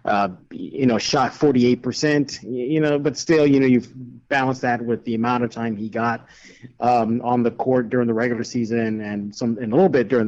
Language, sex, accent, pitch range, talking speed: English, male, American, 120-150 Hz, 210 wpm